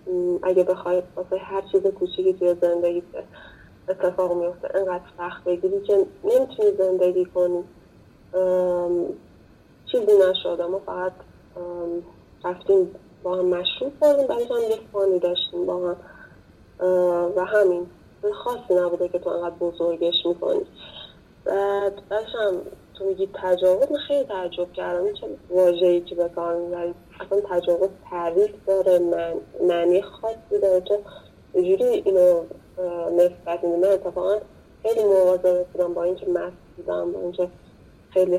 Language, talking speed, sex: Persian, 125 wpm, female